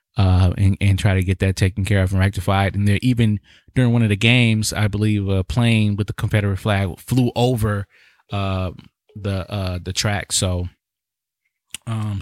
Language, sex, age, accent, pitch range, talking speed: English, male, 20-39, American, 100-125 Hz, 185 wpm